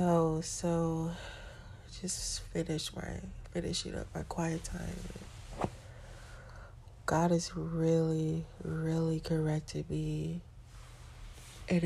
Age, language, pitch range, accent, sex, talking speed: 30-49, English, 120-170 Hz, American, female, 90 wpm